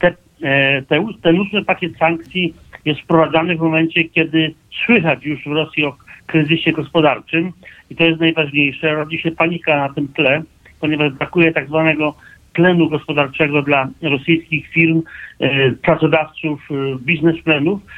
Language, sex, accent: Polish, male, native